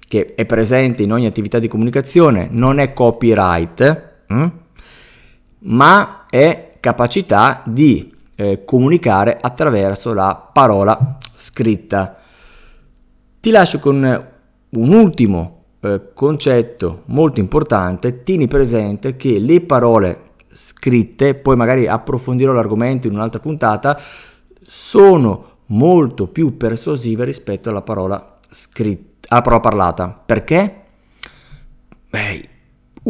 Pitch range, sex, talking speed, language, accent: 105-140 Hz, male, 100 wpm, Italian, native